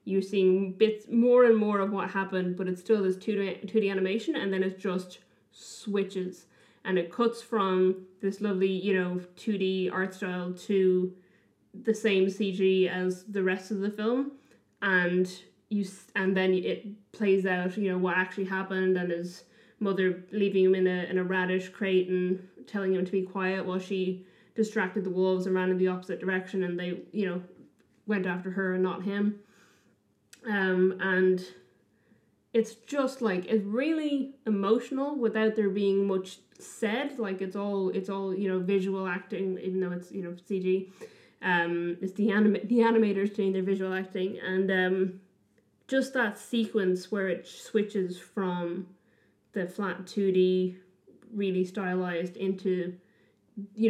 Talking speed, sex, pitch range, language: 165 wpm, female, 185-205 Hz, English